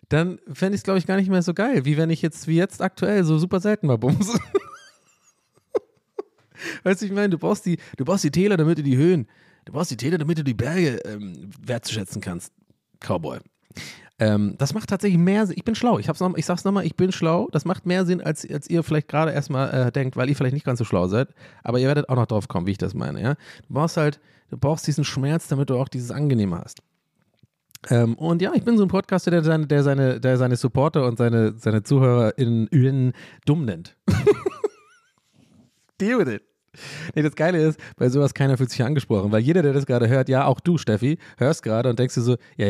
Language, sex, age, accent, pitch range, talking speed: German, male, 30-49, German, 125-175 Hz, 235 wpm